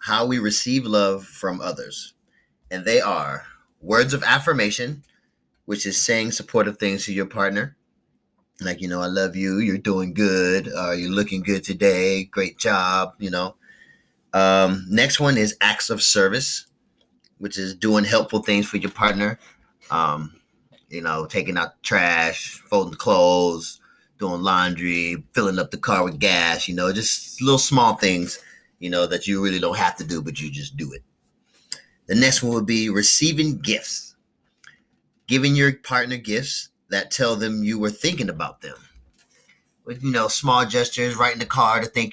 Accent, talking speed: American, 170 wpm